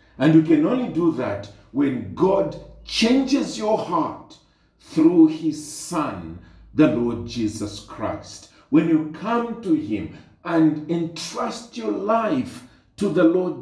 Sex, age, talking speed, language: male, 50-69, 130 wpm, English